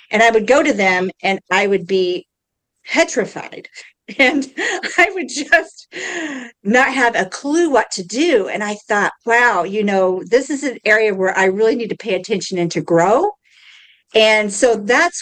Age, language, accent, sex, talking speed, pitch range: 50-69, English, American, female, 175 wpm, 185-245 Hz